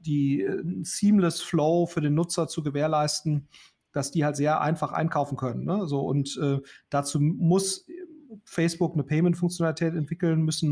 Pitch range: 150-175 Hz